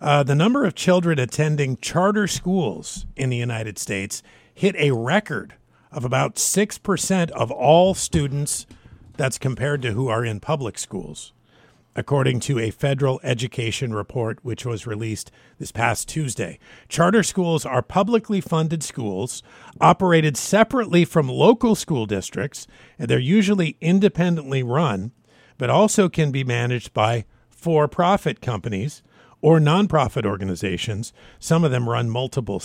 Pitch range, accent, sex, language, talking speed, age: 115-165 Hz, American, male, English, 135 wpm, 50-69